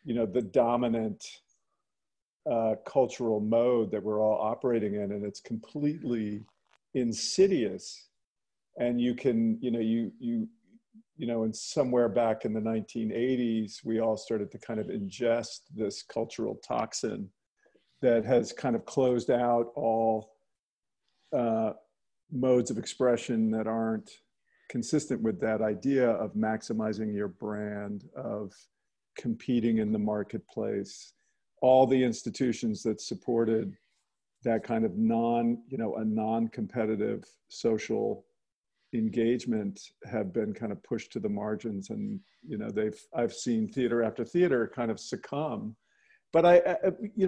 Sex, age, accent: male, 50-69, American